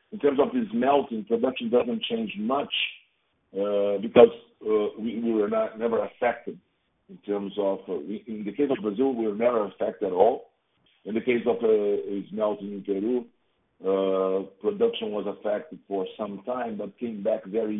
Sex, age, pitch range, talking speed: male, 50-69, 100-125 Hz, 180 wpm